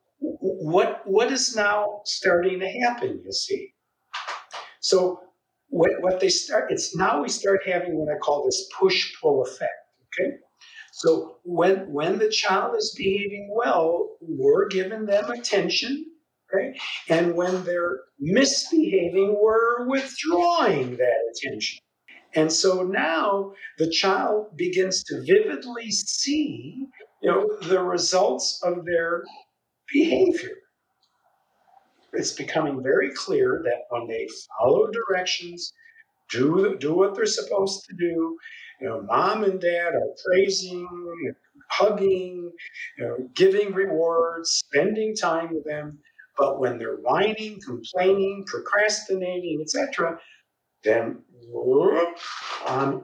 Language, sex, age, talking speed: English, male, 50-69, 120 wpm